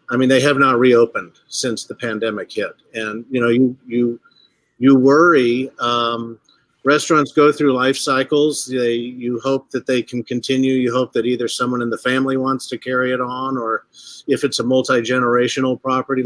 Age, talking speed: 50-69, 185 wpm